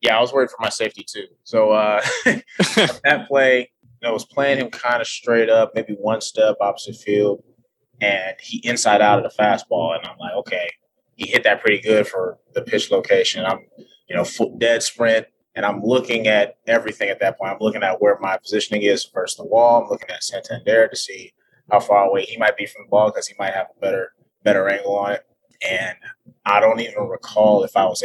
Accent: American